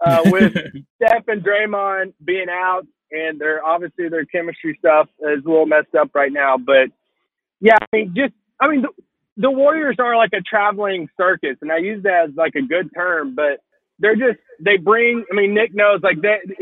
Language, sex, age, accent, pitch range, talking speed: English, male, 30-49, American, 160-210 Hz, 205 wpm